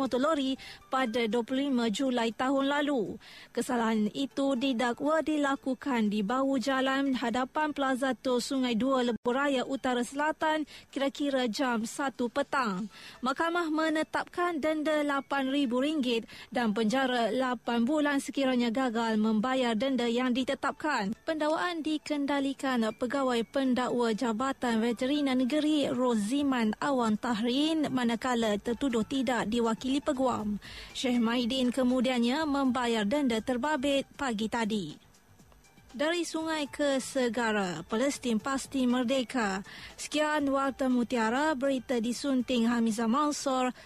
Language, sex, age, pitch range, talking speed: Malay, female, 20-39, 235-275 Hz, 105 wpm